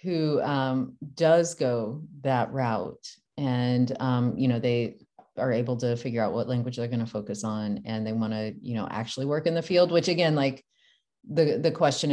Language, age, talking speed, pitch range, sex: English, 30-49, 200 wpm, 125-155 Hz, female